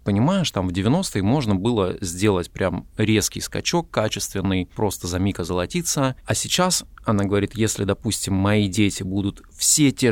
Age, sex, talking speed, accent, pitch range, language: 20-39, male, 155 wpm, native, 100-120 Hz, Russian